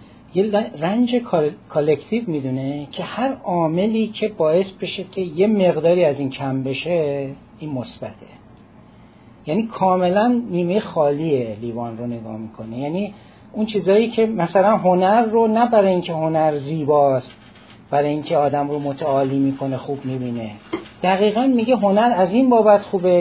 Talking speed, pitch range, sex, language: 140 wpm, 130-195 Hz, male, Persian